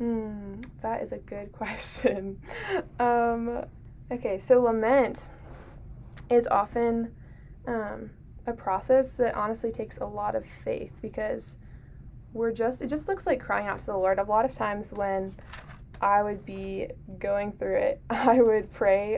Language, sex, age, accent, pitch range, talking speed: English, female, 10-29, American, 195-235 Hz, 150 wpm